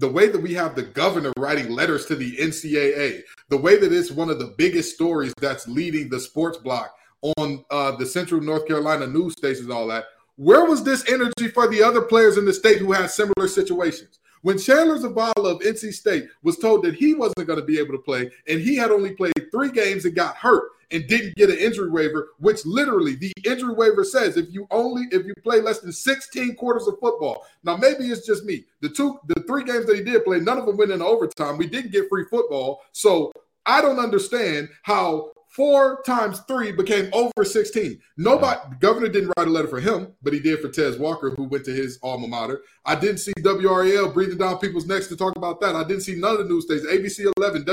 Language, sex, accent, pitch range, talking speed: English, male, American, 160-245 Hz, 230 wpm